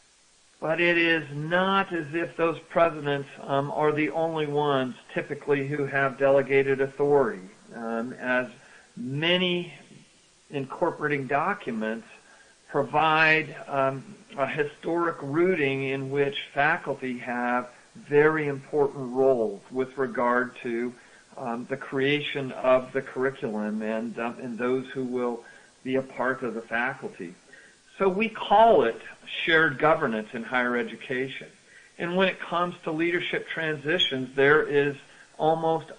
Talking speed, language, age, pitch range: 125 wpm, English, 50-69, 130-160 Hz